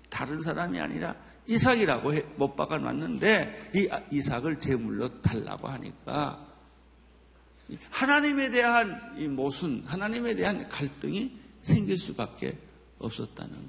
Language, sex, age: Korean, male, 50-69